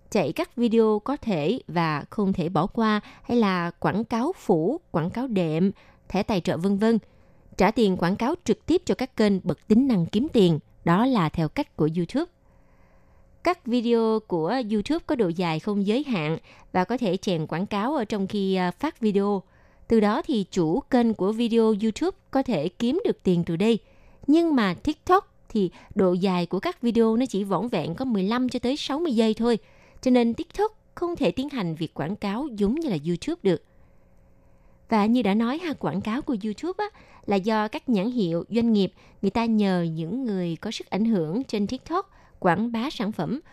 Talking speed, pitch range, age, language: 200 wpm, 185-245 Hz, 20-39, Vietnamese